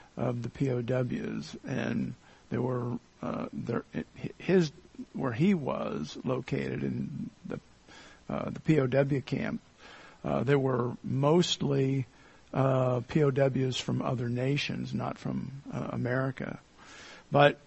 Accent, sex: American, male